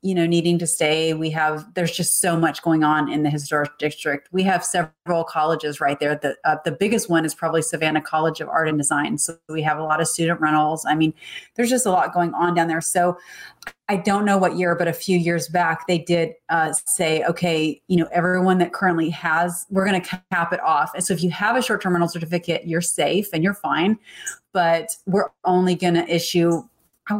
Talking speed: 225 wpm